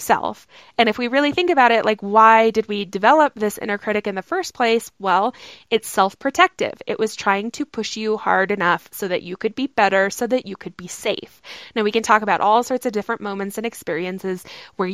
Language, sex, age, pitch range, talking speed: English, female, 20-39, 190-230 Hz, 230 wpm